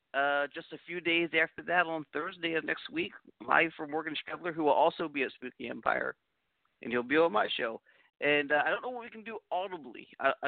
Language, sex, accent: English, male, American